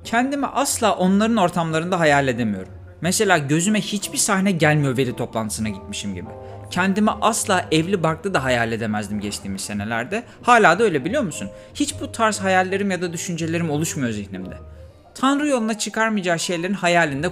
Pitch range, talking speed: 125-190 Hz, 150 wpm